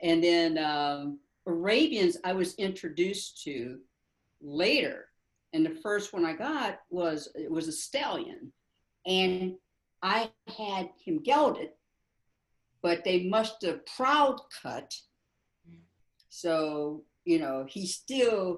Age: 60-79